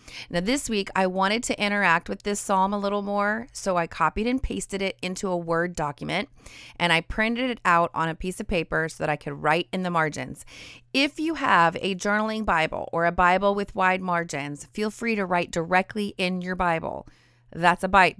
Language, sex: English, female